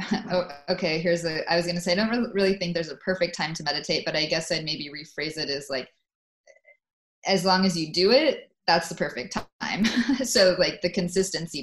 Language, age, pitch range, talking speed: English, 20-39, 155-190 Hz, 205 wpm